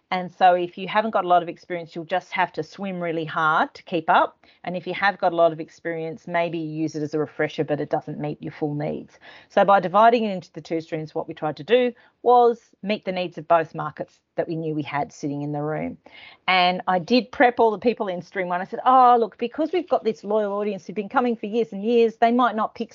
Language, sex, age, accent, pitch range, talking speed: English, female, 40-59, Australian, 160-200 Hz, 265 wpm